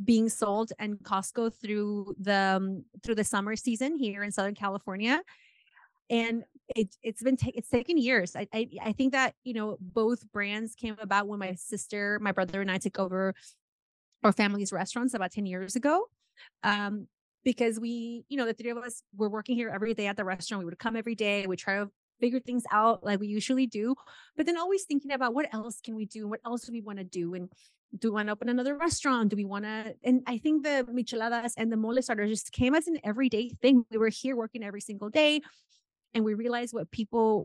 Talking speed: 225 wpm